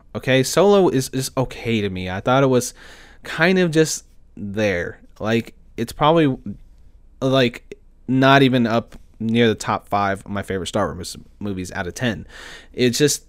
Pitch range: 105-130 Hz